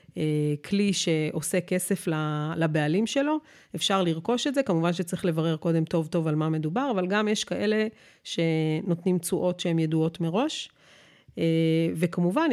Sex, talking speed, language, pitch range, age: female, 135 wpm, Hebrew, 165-210 Hz, 40-59